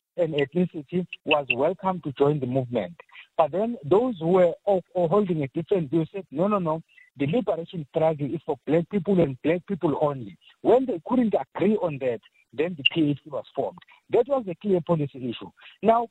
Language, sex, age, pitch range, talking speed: English, male, 50-69, 160-205 Hz, 185 wpm